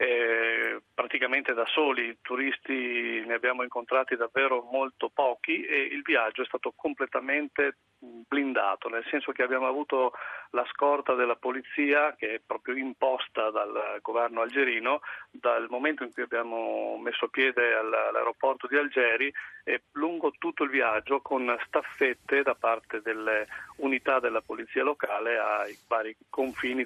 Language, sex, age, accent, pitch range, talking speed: Italian, male, 40-59, native, 115-140 Hz, 135 wpm